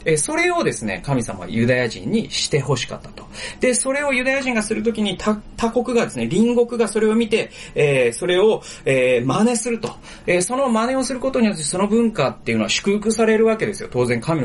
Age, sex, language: 30-49, male, Japanese